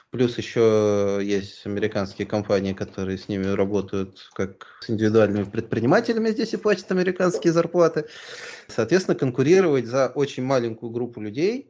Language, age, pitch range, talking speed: Russian, 20-39, 115-180 Hz, 130 wpm